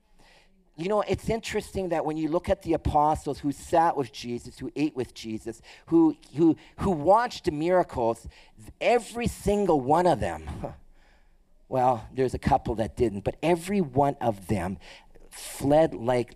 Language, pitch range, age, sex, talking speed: English, 140-195 Hz, 40-59, male, 160 wpm